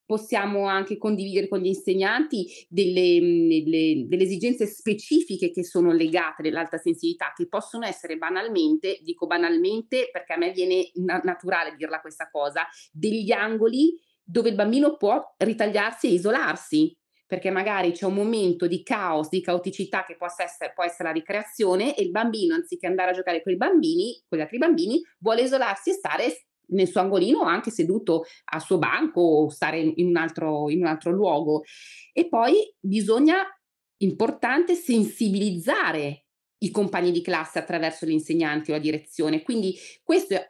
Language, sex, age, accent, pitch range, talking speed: Italian, female, 30-49, native, 175-260 Hz, 155 wpm